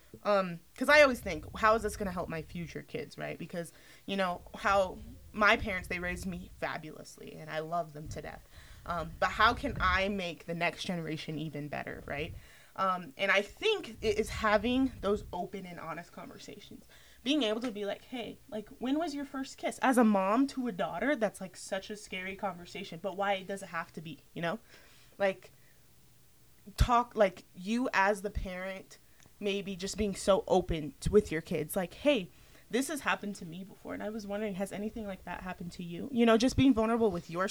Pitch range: 170-220 Hz